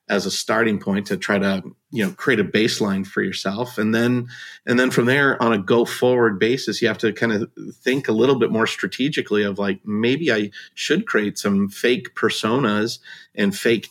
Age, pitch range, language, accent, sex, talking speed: 40-59, 105-125 Hz, English, American, male, 205 wpm